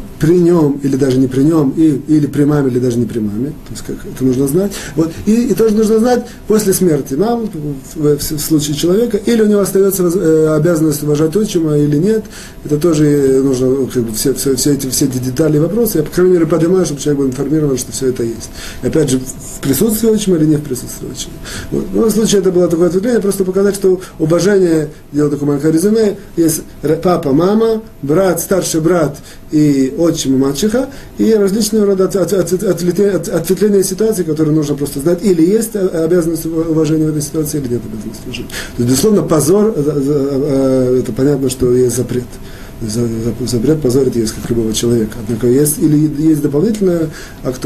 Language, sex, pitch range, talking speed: Russian, male, 130-180 Hz, 190 wpm